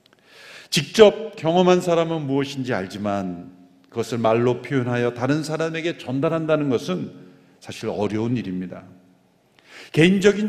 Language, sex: Korean, male